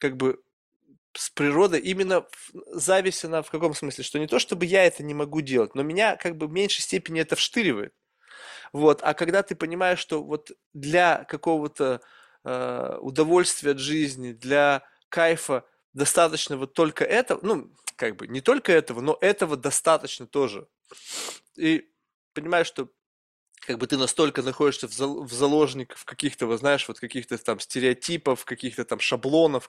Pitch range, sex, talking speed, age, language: 130-160 Hz, male, 150 wpm, 20-39, Russian